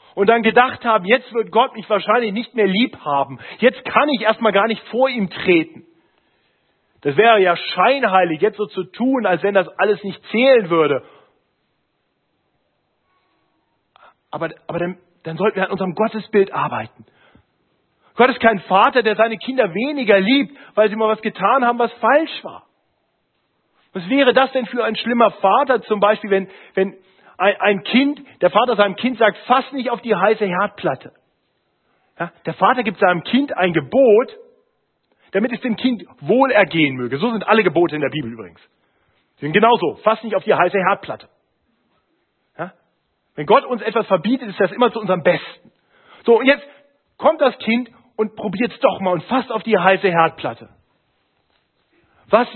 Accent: German